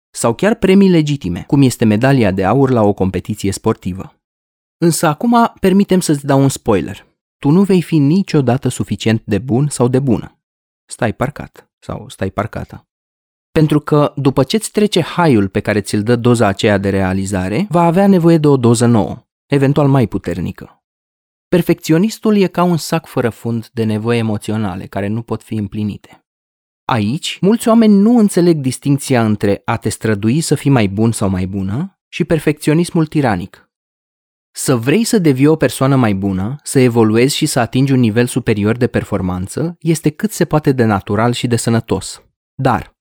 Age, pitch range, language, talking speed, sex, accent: 20-39, 105-155 Hz, Romanian, 170 wpm, male, native